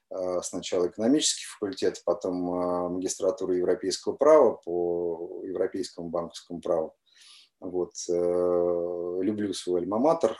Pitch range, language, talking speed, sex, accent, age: 90-120 Hz, Russian, 80 wpm, male, native, 30-49